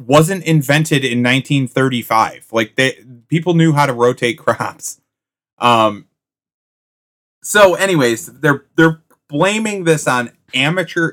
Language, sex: English, male